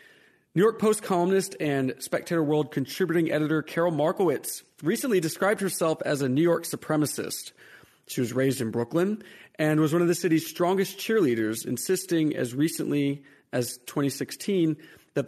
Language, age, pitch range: English, 40-59, 125-180 Hz